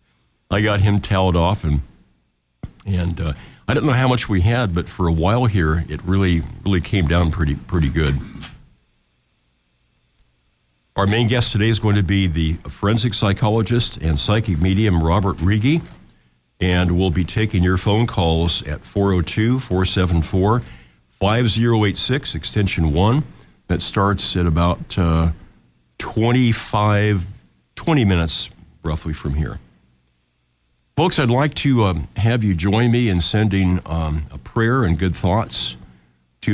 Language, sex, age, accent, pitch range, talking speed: English, male, 50-69, American, 80-105 Hz, 140 wpm